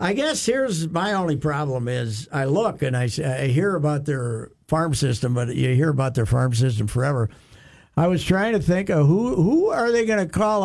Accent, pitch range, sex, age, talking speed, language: American, 120-160 Hz, male, 60-79, 215 wpm, English